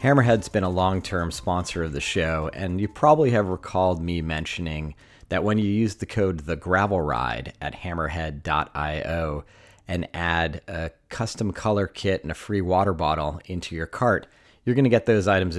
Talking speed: 170 wpm